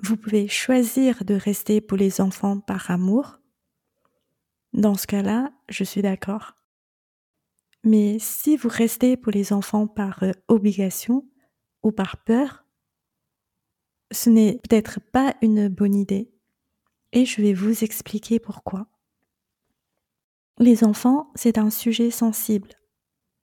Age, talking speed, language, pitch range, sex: 30-49, 120 wpm, French, 205-240 Hz, female